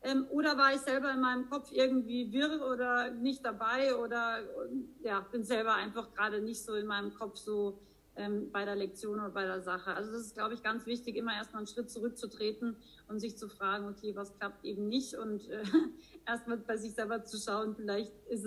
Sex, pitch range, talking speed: female, 205-245 Hz, 210 wpm